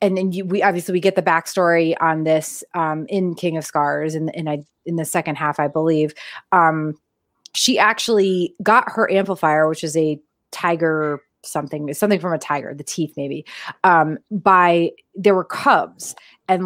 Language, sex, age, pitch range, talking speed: English, female, 30-49, 160-190 Hz, 175 wpm